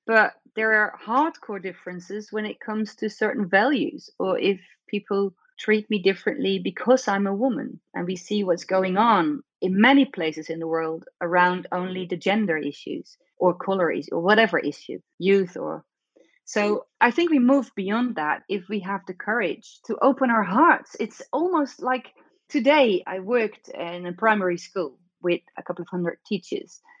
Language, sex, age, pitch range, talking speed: English, female, 30-49, 185-235 Hz, 175 wpm